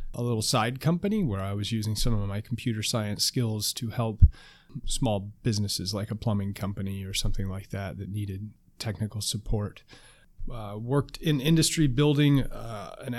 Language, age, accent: English, 30-49, American